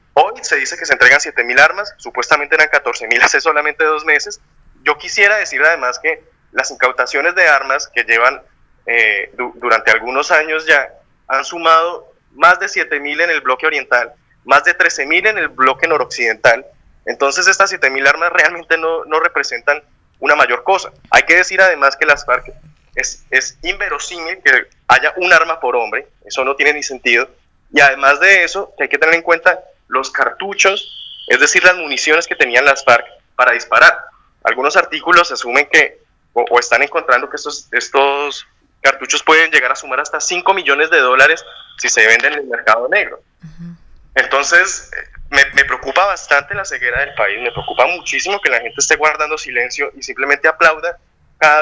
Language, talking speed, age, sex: Spanish, 175 wpm, 20-39, male